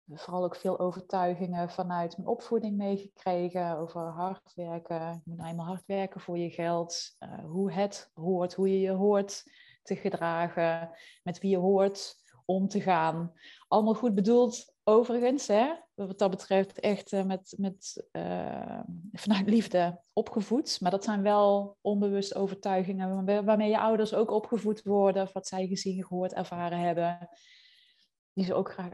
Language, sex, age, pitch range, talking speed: Dutch, female, 20-39, 175-200 Hz, 150 wpm